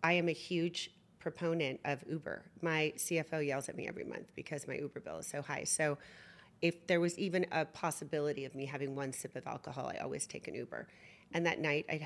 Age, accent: 40-59, American